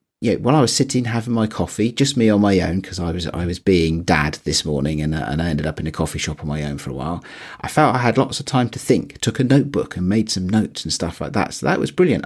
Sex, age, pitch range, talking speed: male, 40-59, 85-135 Hz, 300 wpm